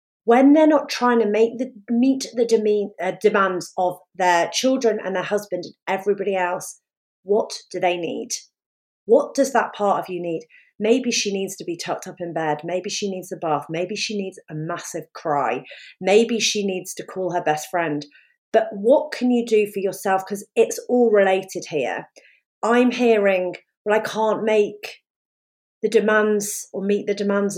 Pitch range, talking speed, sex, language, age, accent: 180-225 Hz, 185 wpm, female, English, 40-59, British